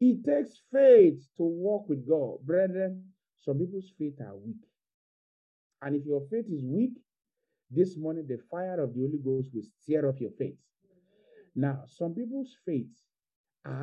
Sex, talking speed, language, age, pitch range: male, 160 wpm, English, 50-69, 140-205 Hz